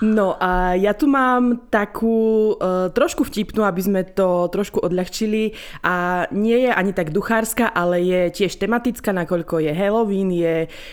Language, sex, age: Slovak, female, 20-39